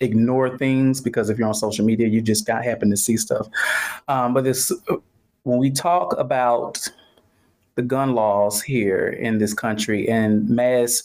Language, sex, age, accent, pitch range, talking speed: English, male, 30-49, American, 115-135 Hz, 170 wpm